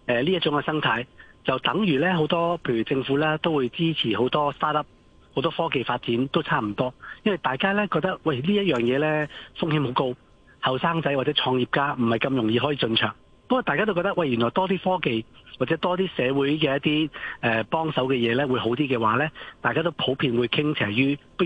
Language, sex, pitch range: Chinese, male, 120-160 Hz